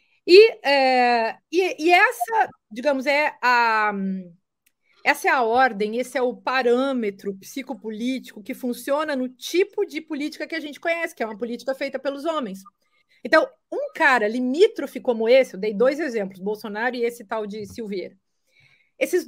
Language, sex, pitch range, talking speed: Portuguese, female, 225-305 Hz, 145 wpm